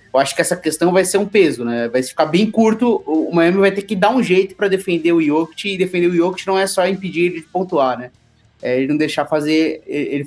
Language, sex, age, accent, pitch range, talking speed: Portuguese, male, 20-39, Brazilian, 140-190 Hz, 255 wpm